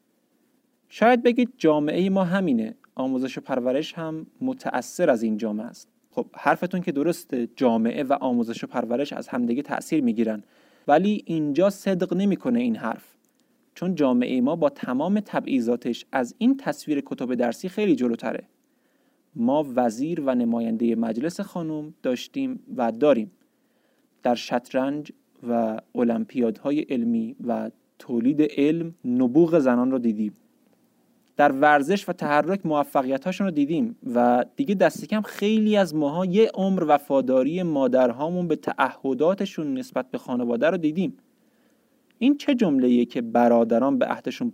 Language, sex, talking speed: Persian, male, 130 wpm